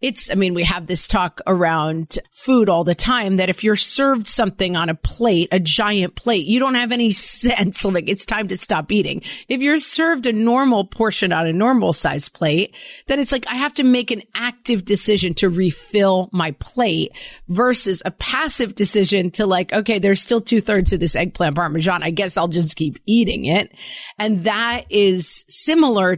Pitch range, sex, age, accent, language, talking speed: 180-235 Hz, female, 40-59, American, English, 195 wpm